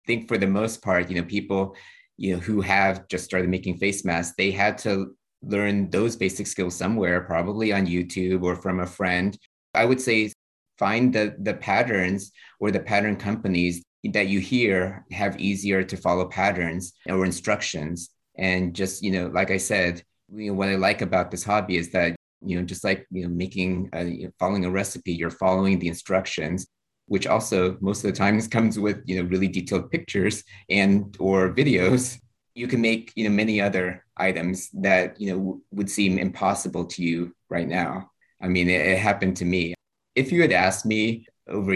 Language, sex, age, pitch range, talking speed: English, male, 30-49, 90-100 Hz, 195 wpm